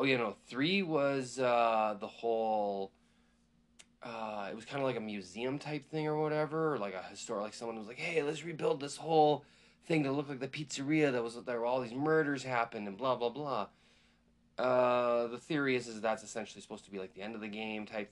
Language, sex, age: English, male, 20-39